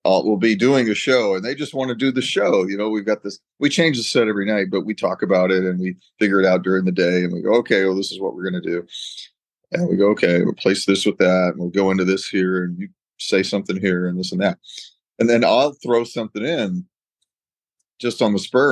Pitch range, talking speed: 95-135 Hz, 270 wpm